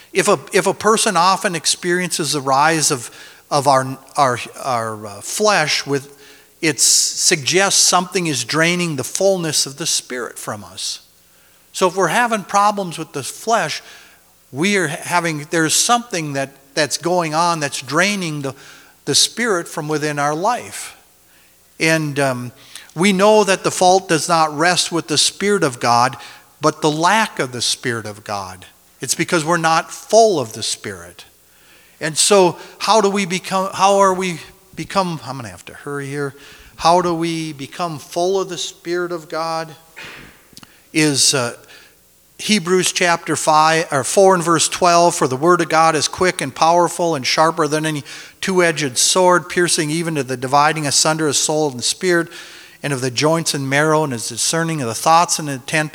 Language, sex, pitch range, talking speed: English, male, 140-180 Hz, 175 wpm